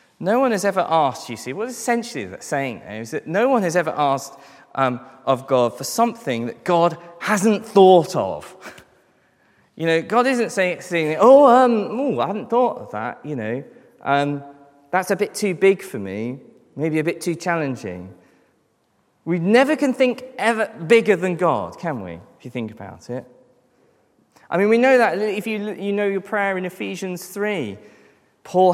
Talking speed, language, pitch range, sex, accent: 185 wpm, English, 140-200 Hz, male, British